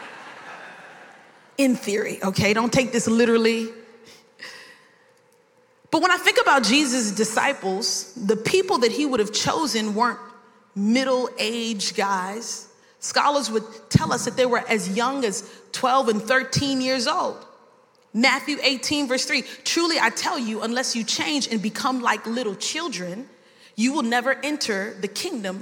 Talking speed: 145 wpm